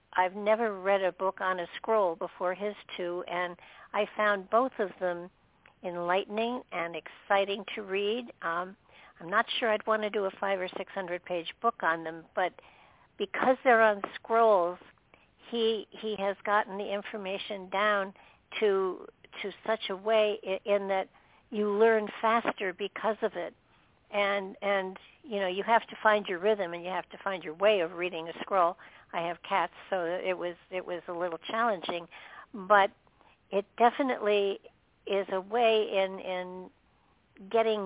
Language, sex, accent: English, female, American